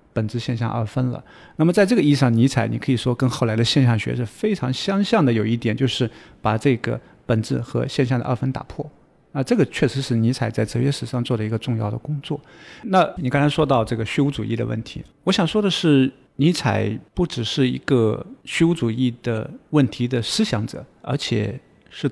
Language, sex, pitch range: Chinese, male, 115-145 Hz